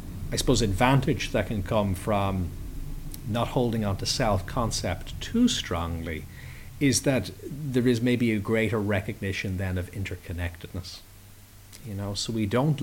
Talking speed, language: 140 wpm, English